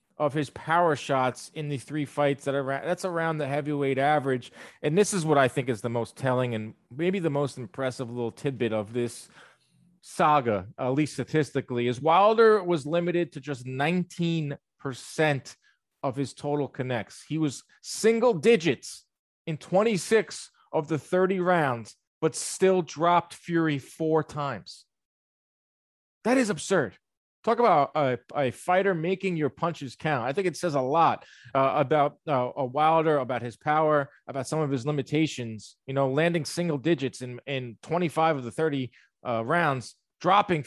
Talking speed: 160 wpm